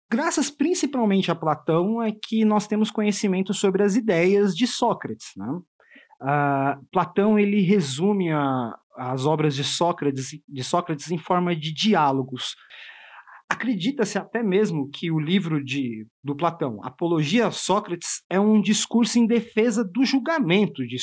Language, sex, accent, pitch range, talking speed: Portuguese, male, Brazilian, 160-215 Hz, 145 wpm